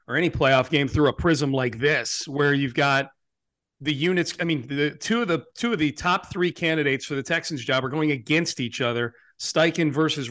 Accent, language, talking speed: American, English, 215 wpm